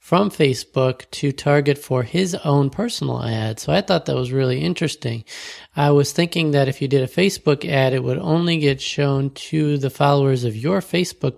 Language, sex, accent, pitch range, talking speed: English, male, American, 130-160 Hz, 195 wpm